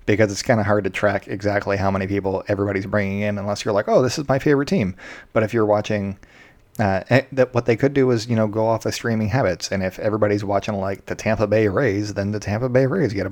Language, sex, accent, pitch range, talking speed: English, male, American, 95-115 Hz, 255 wpm